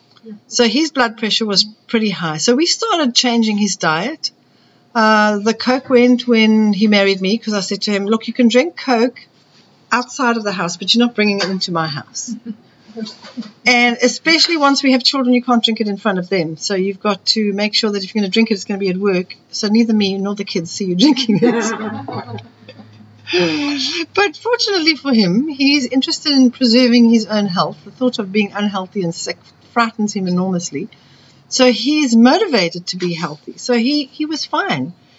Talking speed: 200 wpm